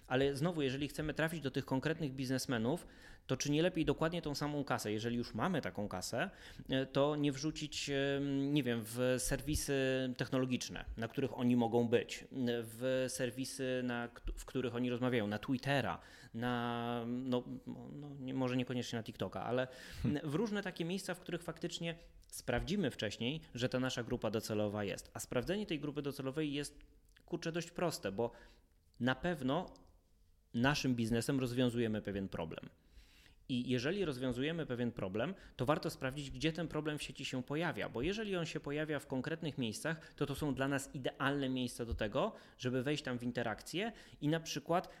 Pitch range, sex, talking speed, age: 120-150 Hz, male, 160 wpm, 20-39